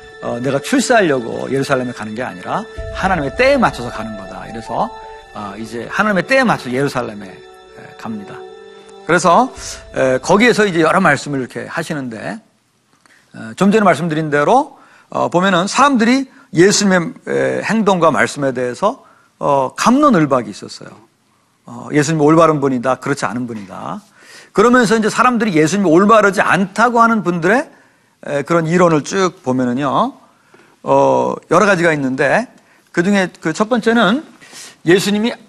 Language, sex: Korean, male